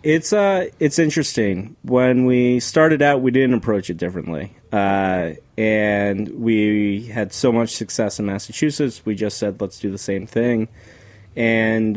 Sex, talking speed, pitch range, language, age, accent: male, 155 wpm, 100-120 Hz, English, 30-49, American